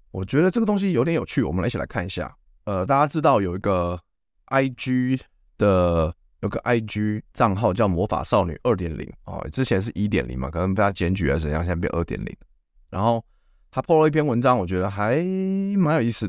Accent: native